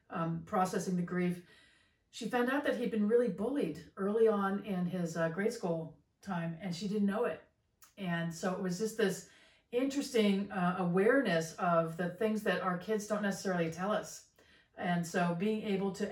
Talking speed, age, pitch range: 180 wpm, 40-59, 175-225 Hz